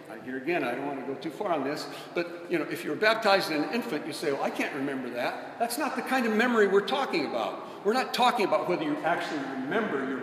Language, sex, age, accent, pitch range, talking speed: English, male, 60-79, American, 145-220 Hz, 265 wpm